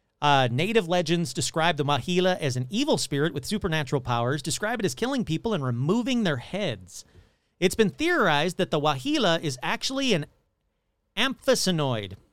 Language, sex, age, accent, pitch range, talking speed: English, male, 40-59, American, 125-210 Hz, 155 wpm